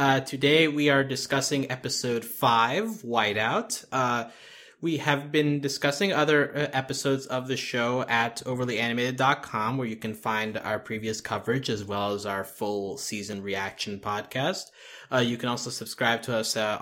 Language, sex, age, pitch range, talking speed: English, male, 20-39, 110-140 Hz, 155 wpm